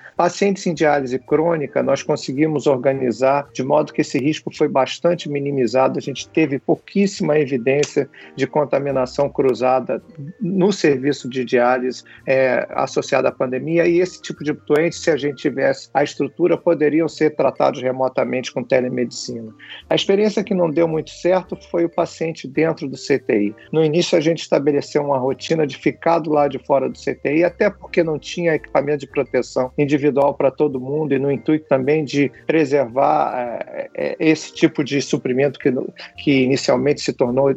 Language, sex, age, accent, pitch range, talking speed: Portuguese, male, 50-69, Brazilian, 135-160 Hz, 165 wpm